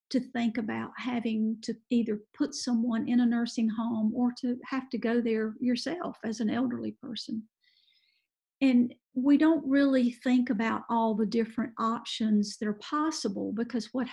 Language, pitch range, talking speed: English, 225-260 Hz, 160 wpm